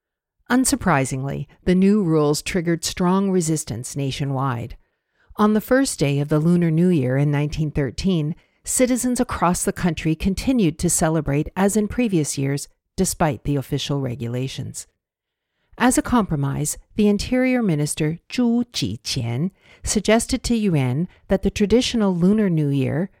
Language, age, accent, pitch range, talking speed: English, 60-79, American, 145-200 Hz, 130 wpm